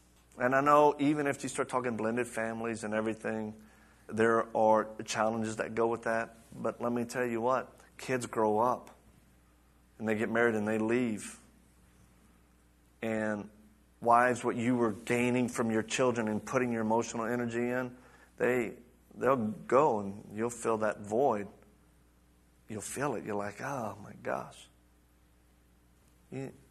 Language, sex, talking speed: English, male, 150 wpm